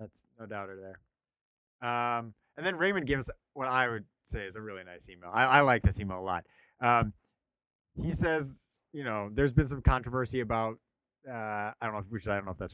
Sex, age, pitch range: male, 30-49, 95-120 Hz